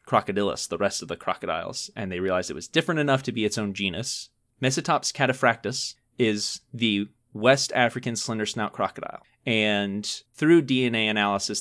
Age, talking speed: 20-39, 160 wpm